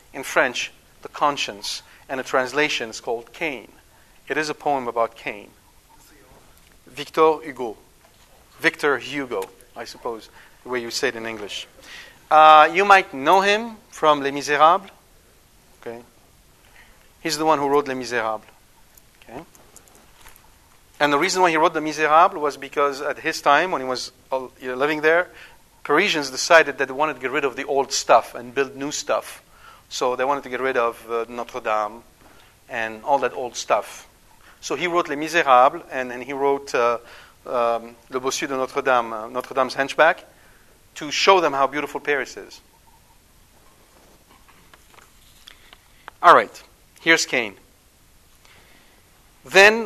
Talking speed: 145 wpm